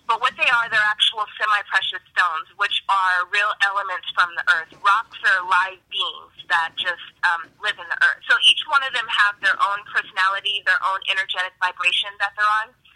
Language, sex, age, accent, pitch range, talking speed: English, female, 20-39, American, 185-220 Hz, 195 wpm